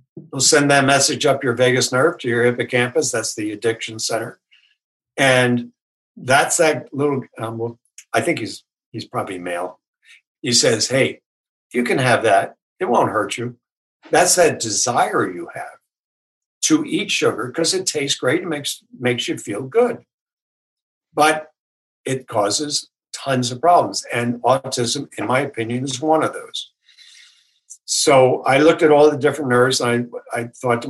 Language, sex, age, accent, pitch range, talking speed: English, male, 60-79, American, 120-150 Hz, 165 wpm